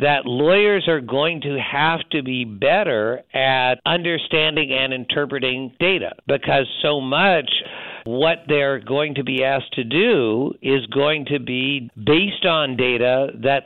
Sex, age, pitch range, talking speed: male, 60-79, 135-160 Hz, 145 wpm